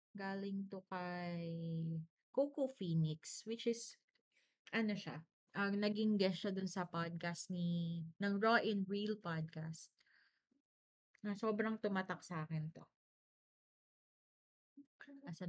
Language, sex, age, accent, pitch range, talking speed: Filipino, female, 20-39, native, 170-210 Hz, 110 wpm